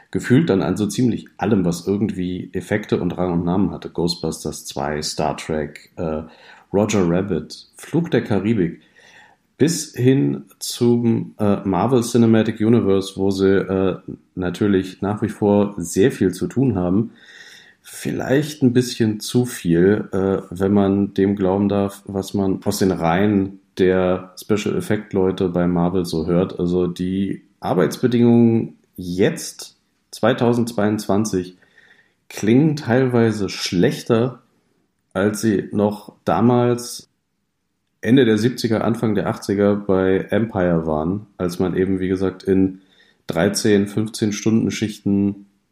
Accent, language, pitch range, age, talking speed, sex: German, German, 95-110 Hz, 40-59, 125 wpm, male